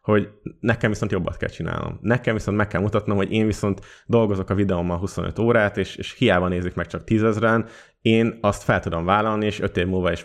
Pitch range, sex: 90-115 Hz, male